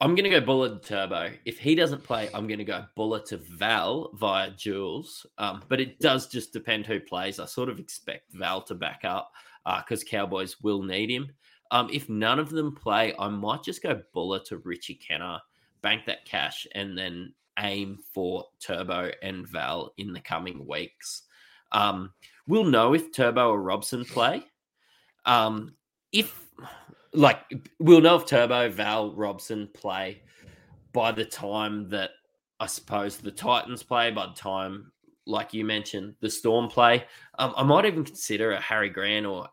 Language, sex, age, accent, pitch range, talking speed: English, male, 20-39, Australian, 100-135 Hz, 175 wpm